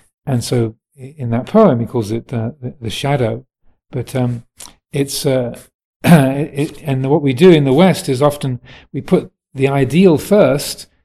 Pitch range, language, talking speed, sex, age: 125-145 Hz, English, 170 wpm, male, 40-59